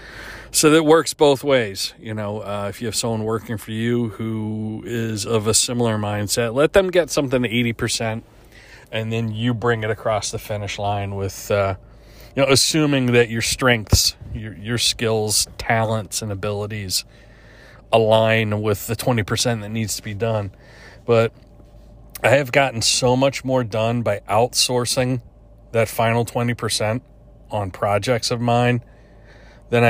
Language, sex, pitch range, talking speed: English, male, 105-120 Hz, 155 wpm